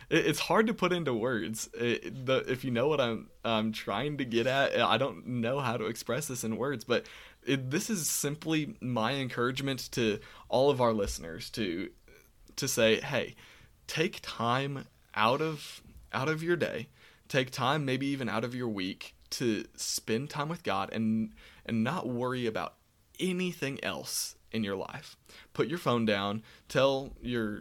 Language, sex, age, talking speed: English, male, 20-39, 170 wpm